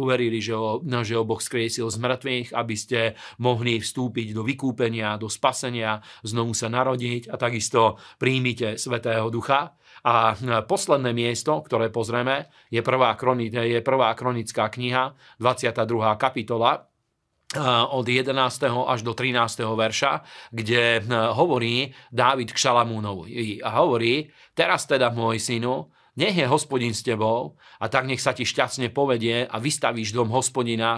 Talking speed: 130 wpm